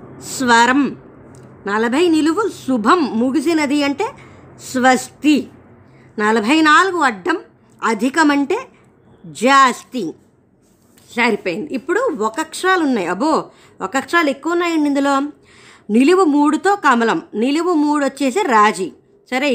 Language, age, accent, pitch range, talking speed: Telugu, 20-39, native, 240-310 Hz, 95 wpm